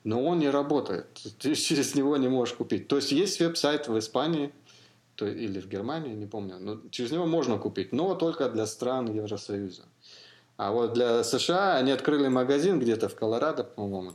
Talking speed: 180 wpm